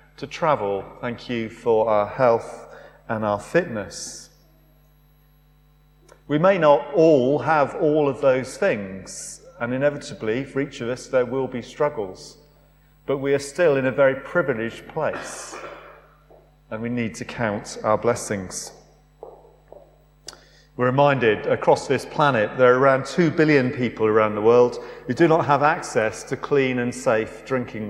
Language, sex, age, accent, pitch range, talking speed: English, male, 40-59, British, 120-150 Hz, 150 wpm